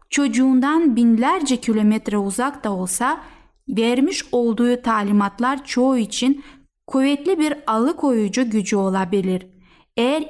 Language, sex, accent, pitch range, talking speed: Turkish, female, native, 215-275 Hz, 100 wpm